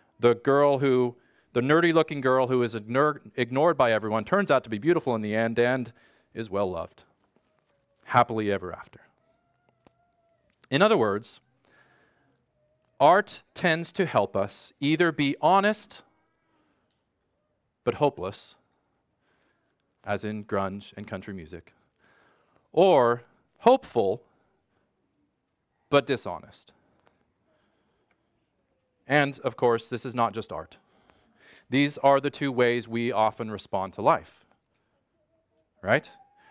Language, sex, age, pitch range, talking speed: English, male, 40-59, 115-150 Hz, 115 wpm